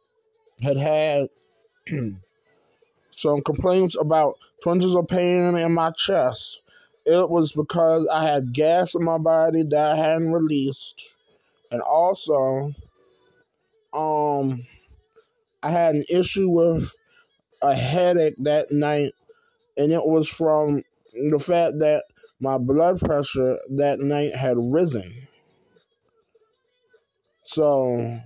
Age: 20-39